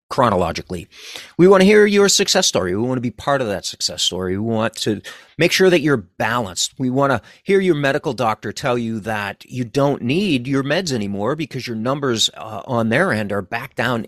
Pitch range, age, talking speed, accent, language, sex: 100-140 Hz, 40-59, 215 wpm, American, English, male